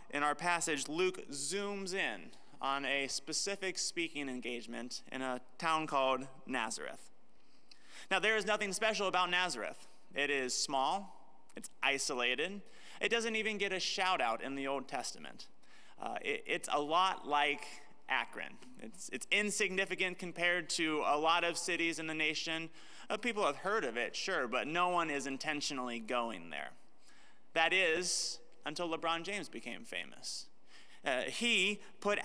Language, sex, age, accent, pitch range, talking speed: English, male, 30-49, American, 145-195 Hz, 150 wpm